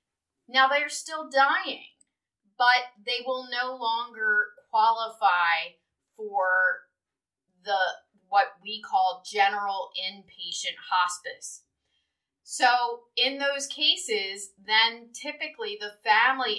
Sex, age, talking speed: female, 30-49, 100 wpm